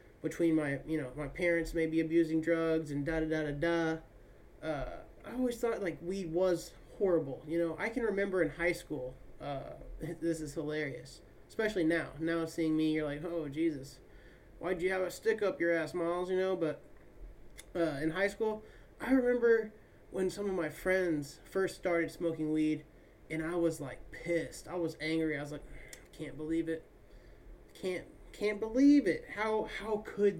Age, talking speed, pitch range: 30-49, 165 wpm, 160-200 Hz